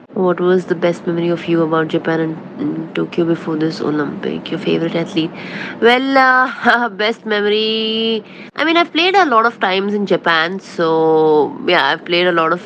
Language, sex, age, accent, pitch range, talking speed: Malayalam, female, 20-39, native, 170-210 Hz, 180 wpm